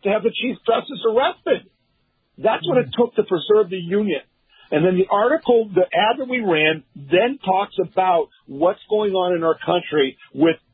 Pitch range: 165-215 Hz